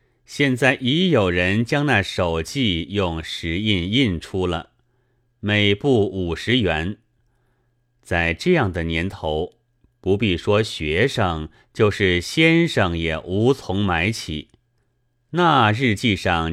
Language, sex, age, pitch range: Chinese, male, 30-49, 90-125 Hz